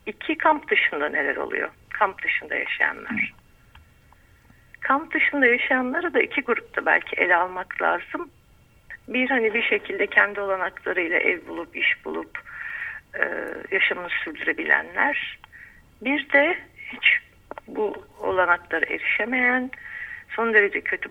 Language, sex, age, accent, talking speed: Turkish, female, 60-79, native, 110 wpm